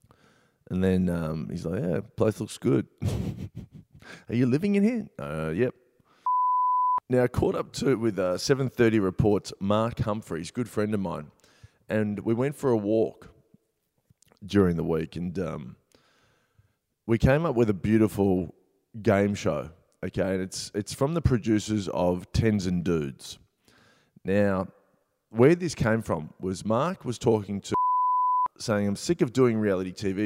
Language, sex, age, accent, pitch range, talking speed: English, male, 20-39, Australian, 95-120 Hz, 155 wpm